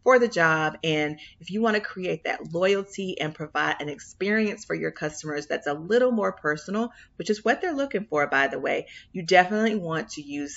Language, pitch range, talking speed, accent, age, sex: English, 150-210 Hz, 210 wpm, American, 40-59, female